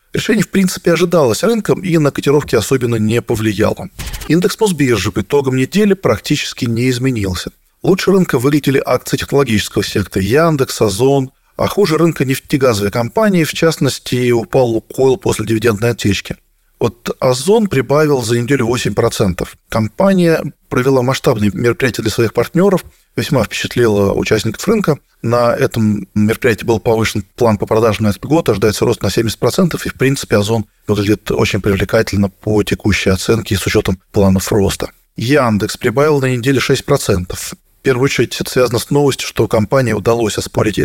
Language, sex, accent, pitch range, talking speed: Russian, male, native, 105-140 Hz, 150 wpm